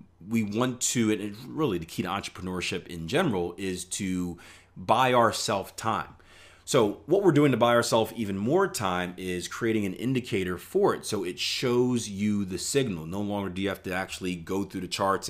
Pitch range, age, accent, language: 90-115 Hz, 30-49, American, English